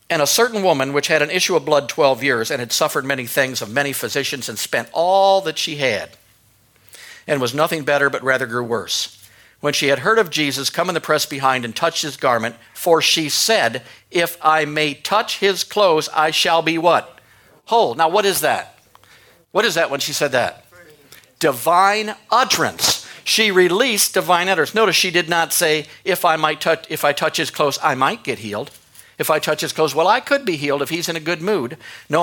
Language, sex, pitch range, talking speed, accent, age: English, male, 145-175 Hz, 215 wpm, American, 60-79